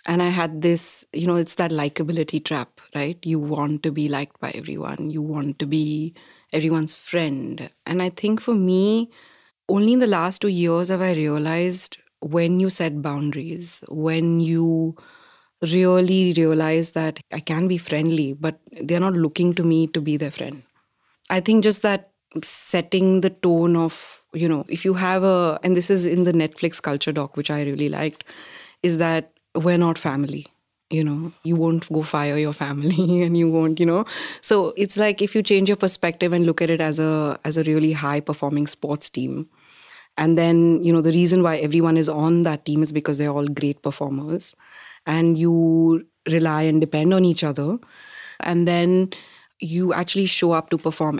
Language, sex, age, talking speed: English, female, 30-49, 190 wpm